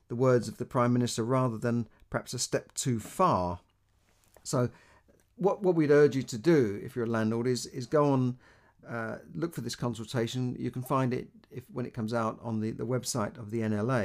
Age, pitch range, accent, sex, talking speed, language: 50-69, 110-130 Hz, British, male, 215 wpm, English